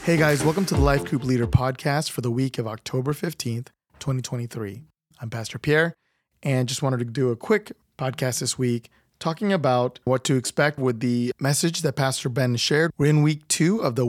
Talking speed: 200 wpm